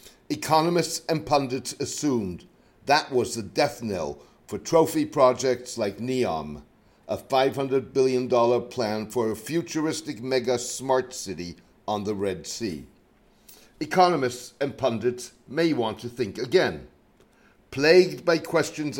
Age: 60-79